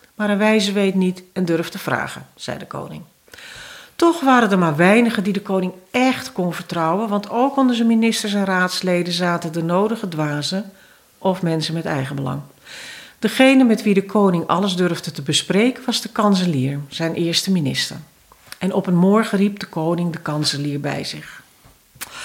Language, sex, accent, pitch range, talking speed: Dutch, female, Dutch, 180-230 Hz, 175 wpm